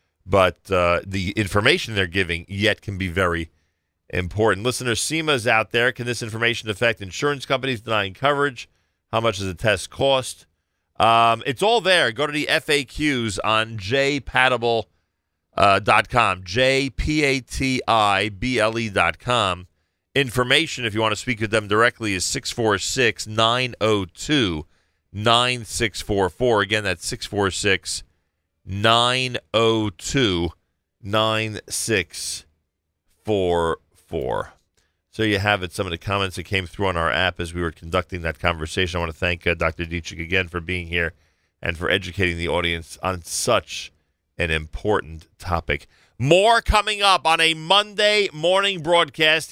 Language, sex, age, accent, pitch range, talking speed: English, male, 40-59, American, 85-125 Hz, 130 wpm